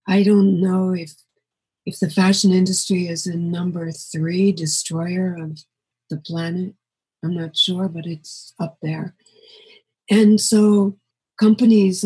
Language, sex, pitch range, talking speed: English, female, 165-200 Hz, 130 wpm